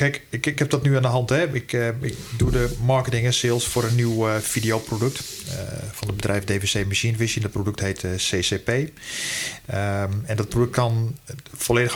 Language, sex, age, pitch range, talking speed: Dutch, male, 40-59, 110-130 Hz, 180 wpm